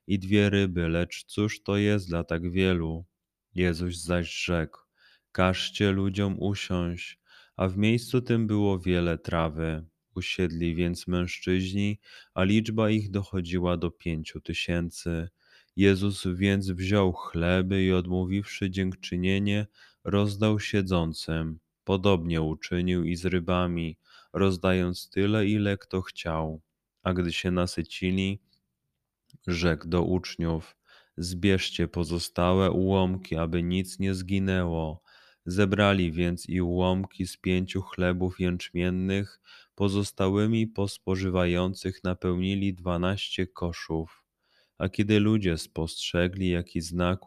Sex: male